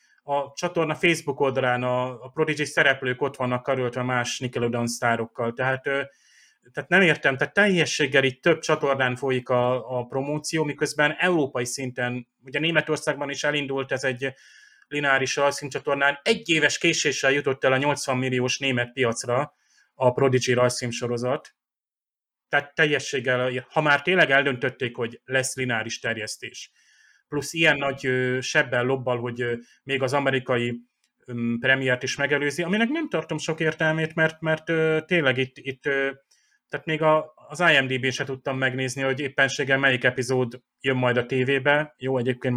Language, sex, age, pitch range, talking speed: Hungarian, male, 30-49, 125-145 Hz, 140 wpm